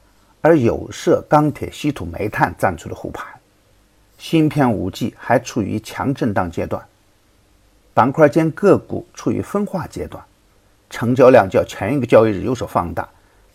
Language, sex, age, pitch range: Chinese, male, 50-69, 100-135 Hz